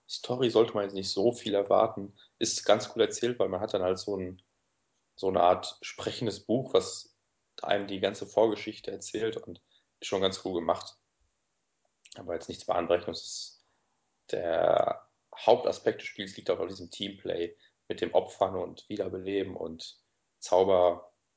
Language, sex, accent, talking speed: German, male, German, 170 wpm